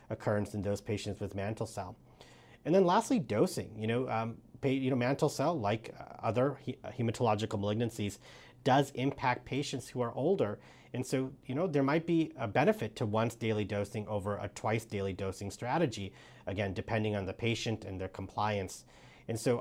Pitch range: 105-135 Hz